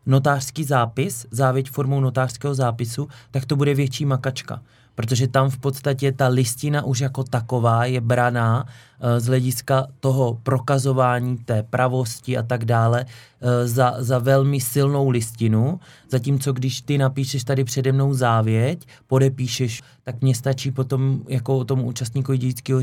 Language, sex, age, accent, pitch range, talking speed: Czech, male, 20-39, native, 120-135 Hz, 145 wpm